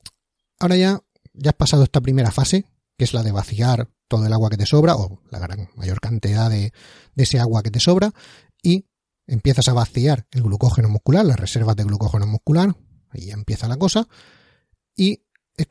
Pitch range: 115-150 Hz